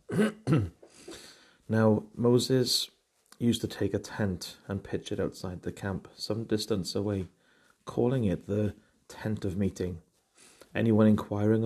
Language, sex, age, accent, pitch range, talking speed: English, male, 30-49, British, 95-110 Hz, 125 wpm